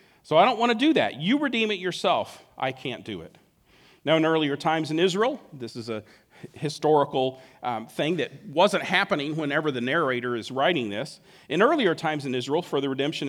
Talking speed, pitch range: 200 wpm, 140-185 Hz